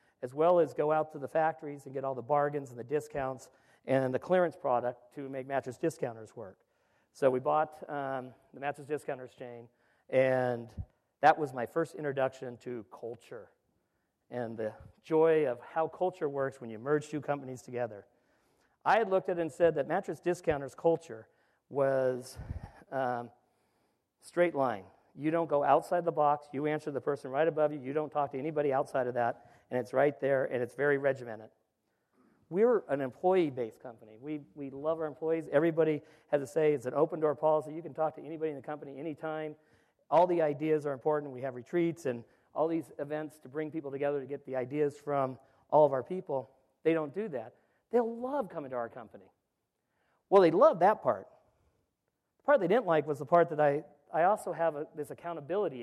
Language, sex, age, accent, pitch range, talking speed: English, male, 50-69, American, 130-160 Hz, 195 wpm